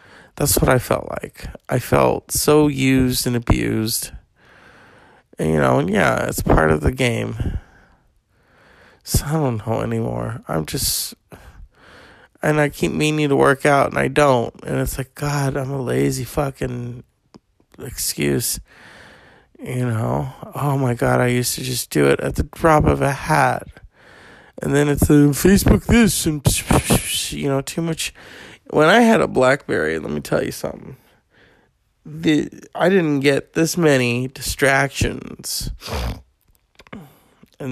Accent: American